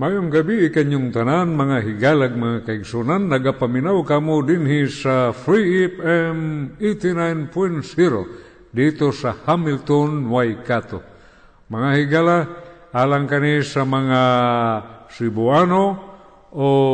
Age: 50-69